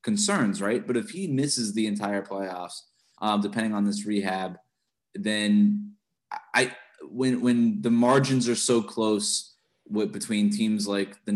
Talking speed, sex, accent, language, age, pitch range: 145 wpm, male, American, English, 20-39, 100-125 Hz